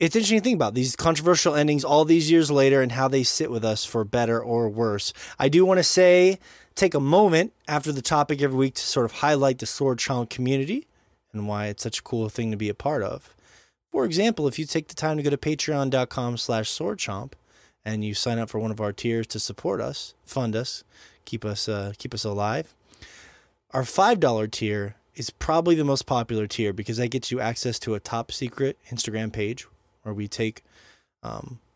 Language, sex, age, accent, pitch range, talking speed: English, male, 20-39, American, 110-135 Hz, 215 wpm